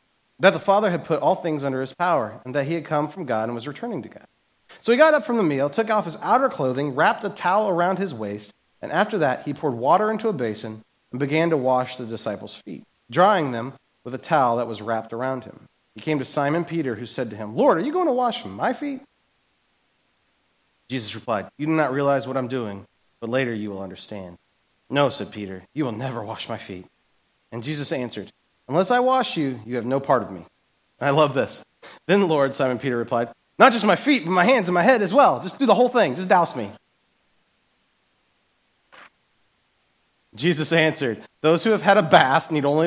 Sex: male